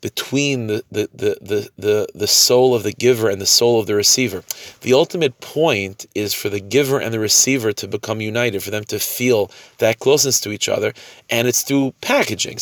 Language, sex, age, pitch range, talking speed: English, male, 30-49, 105-130 Hz, 200 wpm